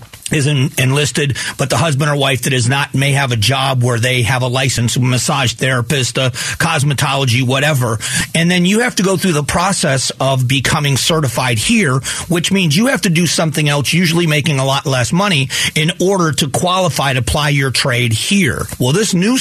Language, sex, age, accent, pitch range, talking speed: English, male, 40-59, American, 130-165 Hz, 200 wpm